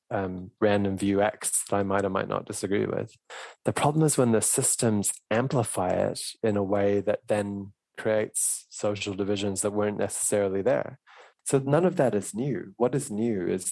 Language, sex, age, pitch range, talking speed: English, male, 20-39, 95-115 Hz, 185 wpm